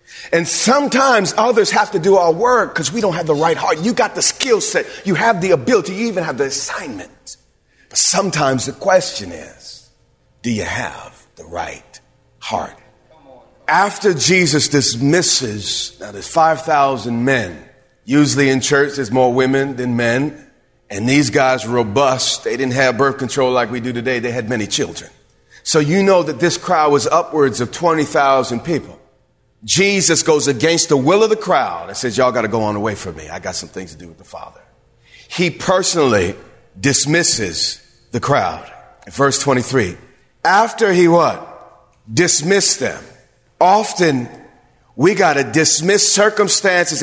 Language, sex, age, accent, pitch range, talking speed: English, male, 40-59, American, 130-185 Hz, 165 wpm